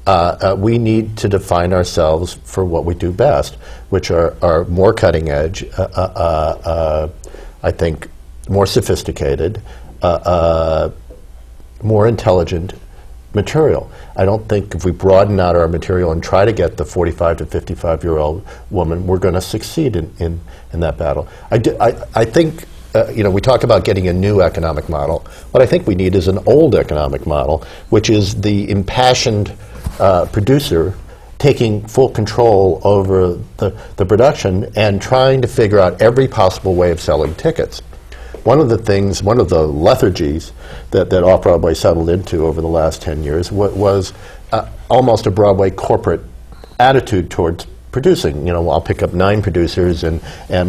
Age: 50-69